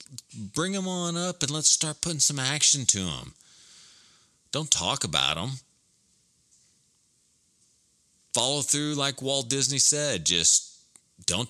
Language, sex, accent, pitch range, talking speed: English, male, American, 85-140 Hz, 125 wpm